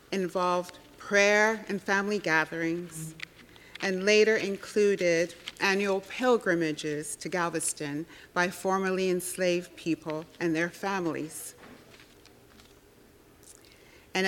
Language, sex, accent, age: English, female, American, 40-59